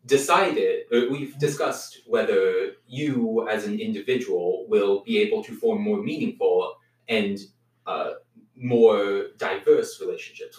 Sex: male